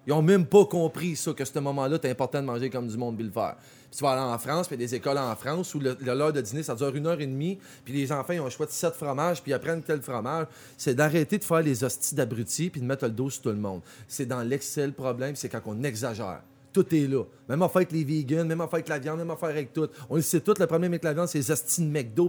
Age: 30-49